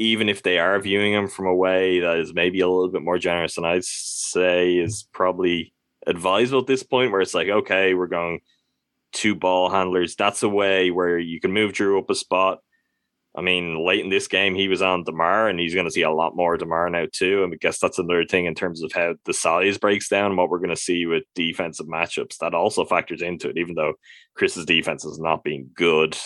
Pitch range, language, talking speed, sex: 85-100 Hz, English, 240 wpm, male